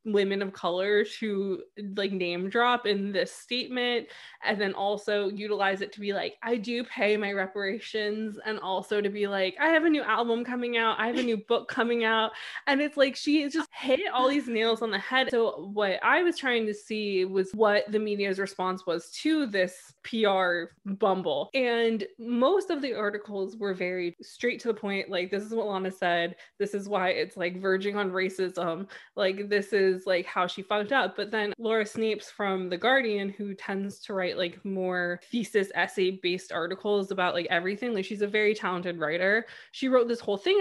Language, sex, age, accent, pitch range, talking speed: English, female, 20-39, American, 185-225 Hz, 200 wpm